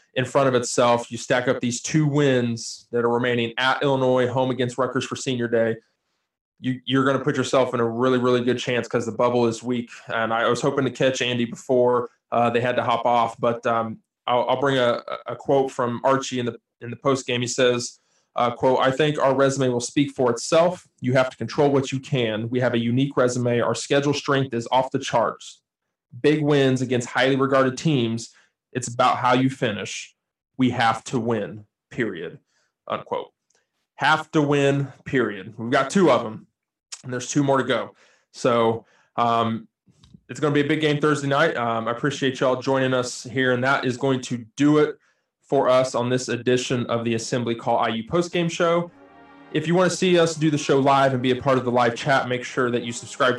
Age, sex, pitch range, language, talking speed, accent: 20-39, male, 120-140 Hz, English, 215 wpm, American